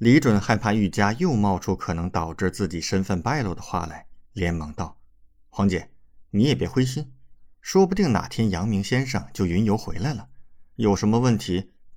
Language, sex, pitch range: Chinese, male, 80-110 Hz